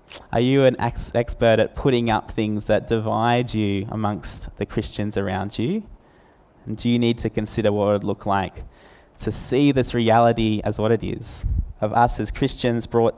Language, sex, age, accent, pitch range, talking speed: English, male, 20-39, Australian, 105-120 Hz, 180 wpm